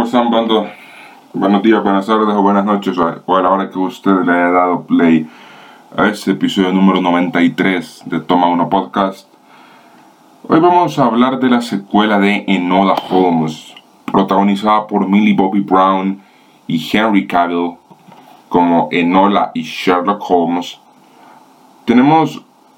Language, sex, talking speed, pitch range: Spanish, male, 135 wpm, 90-120 Hz